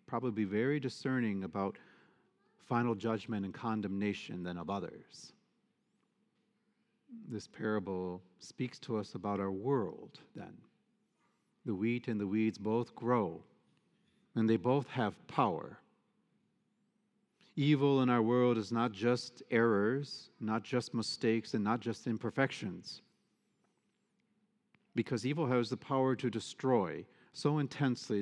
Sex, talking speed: male, 120 wpm